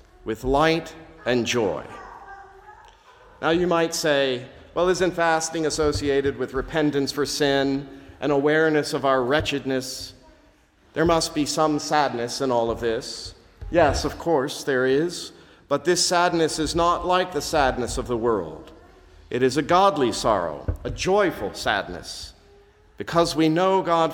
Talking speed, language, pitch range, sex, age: 145 wpm, English, 140-185 Hz, male, 50-69